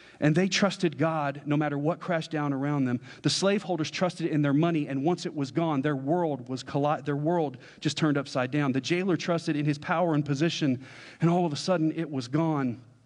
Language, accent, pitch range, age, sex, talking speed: English, American, 125-165 Hz, 40-59, male, 220 wpm